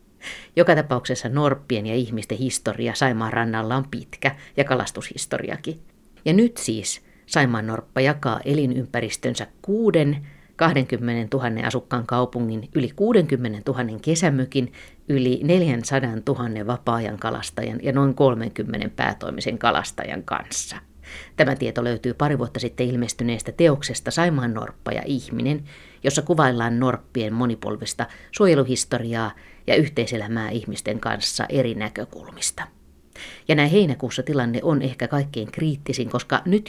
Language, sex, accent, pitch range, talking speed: Finnish, female, native, 115-145 Hz, 120 wpm